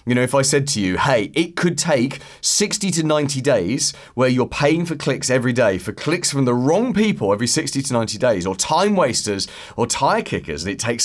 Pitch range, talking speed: 105-145 Hz, 230 wpm